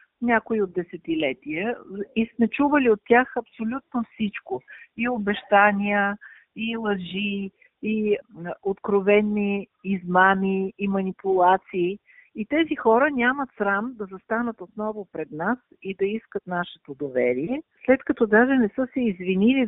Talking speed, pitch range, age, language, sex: 125 wpm, 170-225 Hz, 50-69, Bulgarian, female